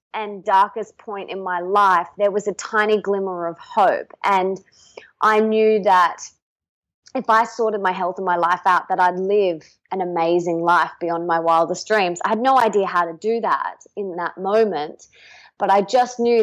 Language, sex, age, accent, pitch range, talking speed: English, female, 20-39, Australian, 185-225 Hz, 185 wpm